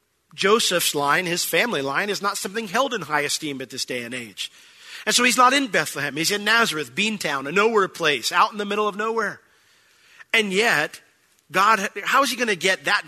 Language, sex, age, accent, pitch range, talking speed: English, male, 40-59, American, 145-205 Hz, 210 wpm